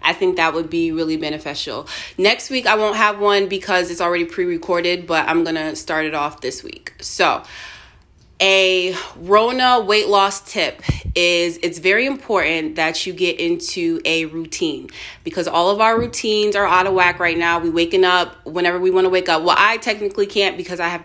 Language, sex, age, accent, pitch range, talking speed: English, female, 20-39, American, 170-200 Hz, 195 wpm